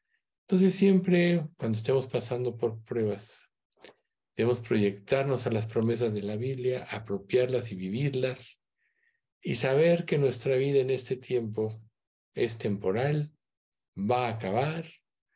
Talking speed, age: 120 wpm, 50-69